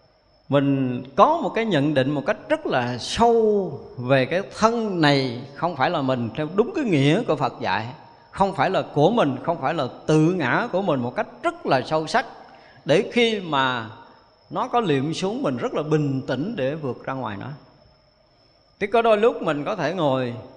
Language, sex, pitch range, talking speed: Vietnamese, male, 120-165 Hz, 200 wpm